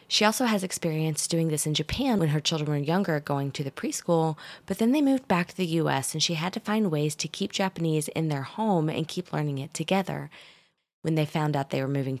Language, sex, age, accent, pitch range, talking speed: English, female, 20-39, American, 150-185 Hz, 240 wpm